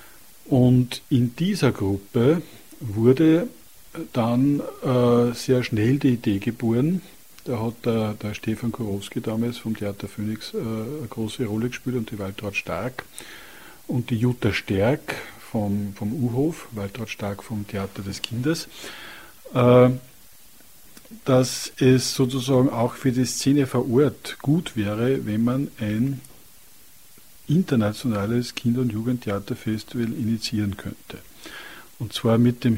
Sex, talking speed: male, 125 wpm